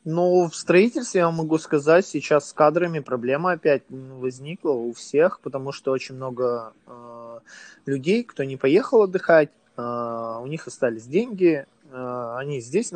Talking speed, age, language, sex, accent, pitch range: 155 wpm, 20-39, Russian, male, native, 125-160 Hz